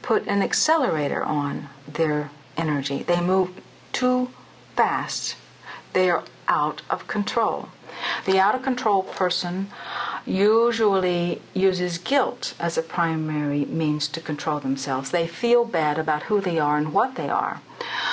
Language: English